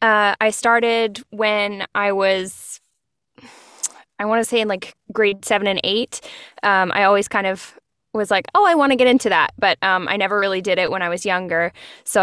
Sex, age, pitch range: female, 10-29, 185-215 Hz